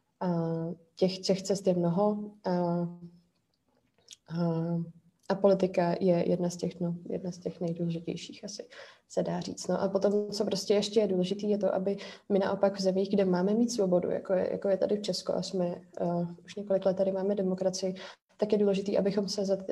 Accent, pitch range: native, 180-195 Hz